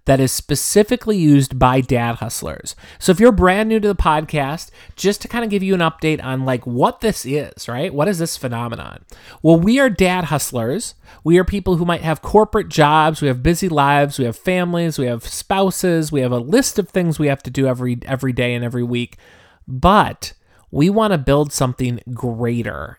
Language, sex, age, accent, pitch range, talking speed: English, male, 30-49, American, 125-190 Hz, 205 wpm